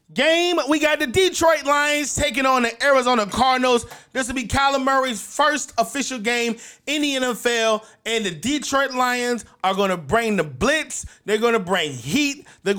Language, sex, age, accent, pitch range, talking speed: English, male, 30-49, American, 225-285 Hz, 170 wpm